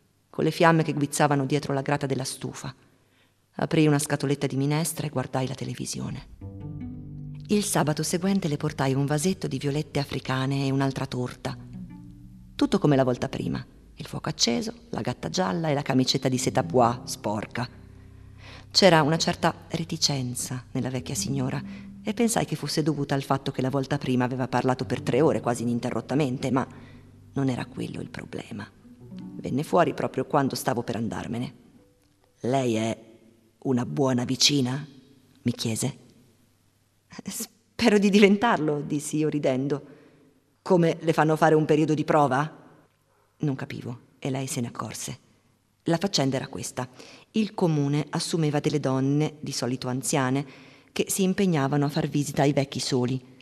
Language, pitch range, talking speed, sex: Italian, 125-150 Hz, 155 wpm, female